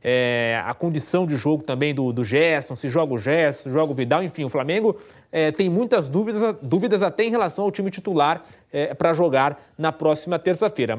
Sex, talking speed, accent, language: male, 195 wpm, Brazilian, English